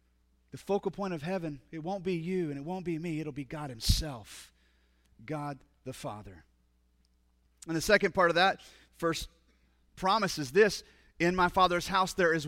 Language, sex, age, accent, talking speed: English, male, 30-49, American, 180 wpm